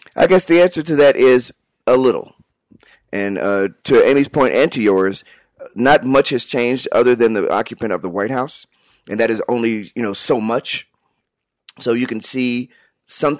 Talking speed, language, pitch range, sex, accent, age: 190 wpm, English, 95-125 Hz, male, American, 40-59